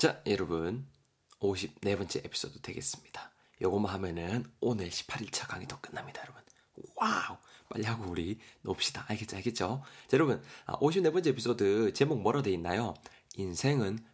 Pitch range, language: 100-140 Hz, Korean